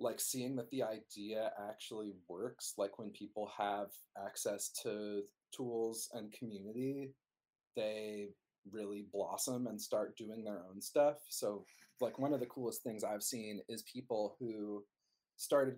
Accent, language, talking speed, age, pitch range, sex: American, English, 145 wpm, 30-49, 105-120 Hz, male